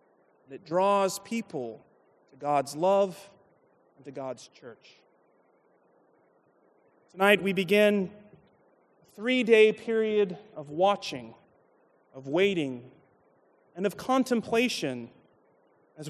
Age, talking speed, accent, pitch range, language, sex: 30-49, 95 wpm, American, 150-210 Hz, English, male